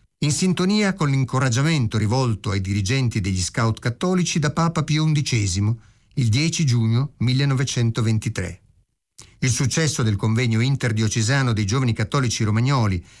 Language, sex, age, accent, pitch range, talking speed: Italian, male, 50-69, native, 110-150 Hz, 125 wpm